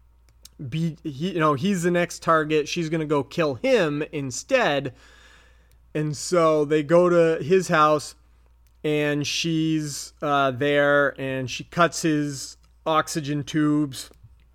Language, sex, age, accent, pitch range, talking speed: English, male, 30-49, American, 130-160 Hz, 130 wpm